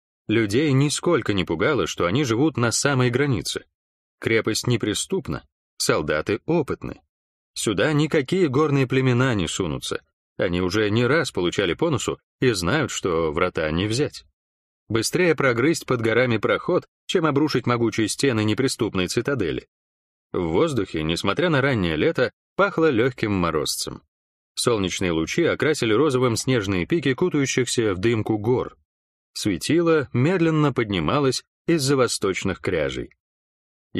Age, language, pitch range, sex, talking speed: 30-49, Russian, 100-150 Hz, male, 120 wpm